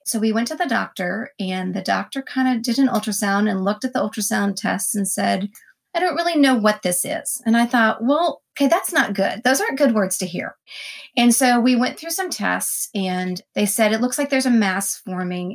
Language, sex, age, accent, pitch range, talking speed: English, female, 30-49, American, 200-260 Hz, 230 wpm